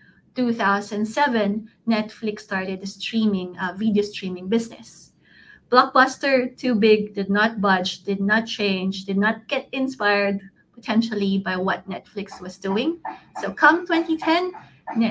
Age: 20-39